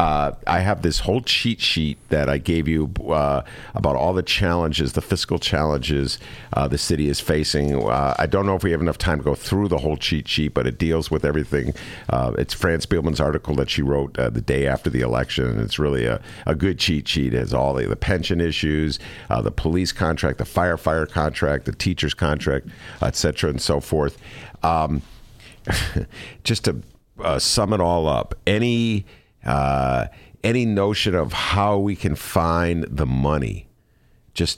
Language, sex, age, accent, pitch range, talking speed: English, male, 50-69, American, 70-90 Hz, 185 wpm